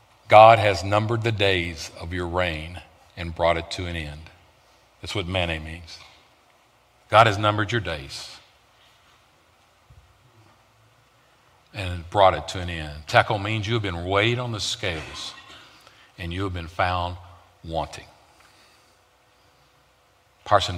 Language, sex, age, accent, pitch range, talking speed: English, male, 50-69, American, 80-100 Hz, 130 wpm